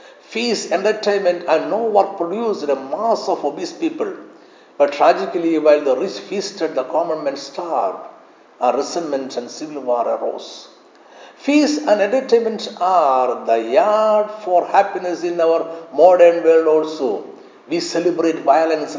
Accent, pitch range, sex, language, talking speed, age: native, 155-225 Hz, male, Malayalam, 140 wpm, 60-79